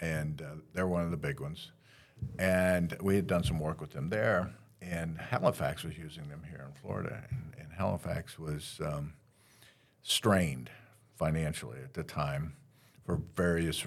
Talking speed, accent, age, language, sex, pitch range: 160 wpm, American, 50-69, English, male, 80-135 Hz